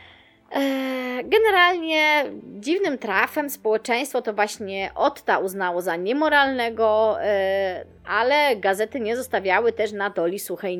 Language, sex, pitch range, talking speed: Polish, female, 190-275 Hz, 100 wpm